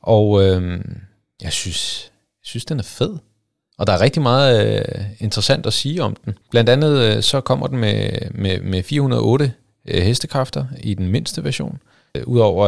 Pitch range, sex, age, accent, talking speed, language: 95-120 Hz, male, 30-49, native, 150 wpm, Danish